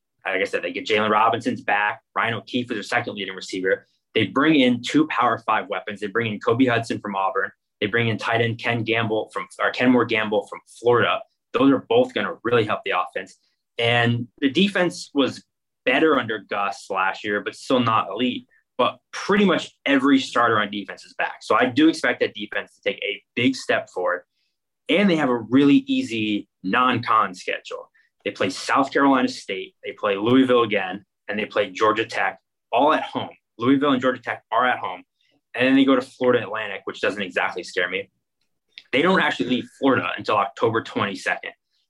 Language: English